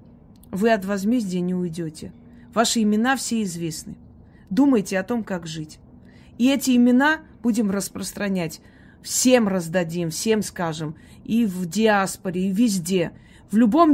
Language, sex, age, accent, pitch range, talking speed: Russian, female, 30-49, native, 180-235 Hz, 130 wpm